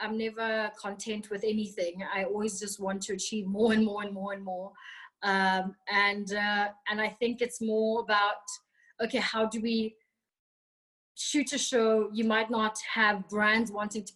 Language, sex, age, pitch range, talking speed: English, female, 20-39, 205-225 Hz, 175 wpm